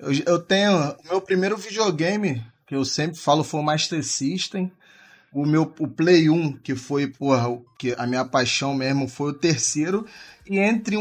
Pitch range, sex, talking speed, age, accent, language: 140-185 Hz, male, 170 wpm, 20-39, Brazilian, Portuguese